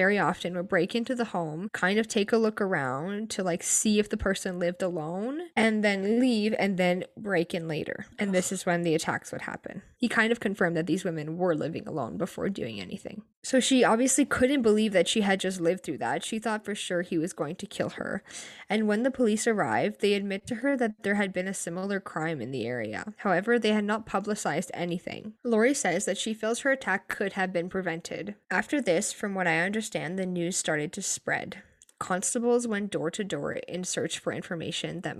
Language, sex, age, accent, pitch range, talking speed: English, female, 10-29, American, 175-220 Hz, 220 wpm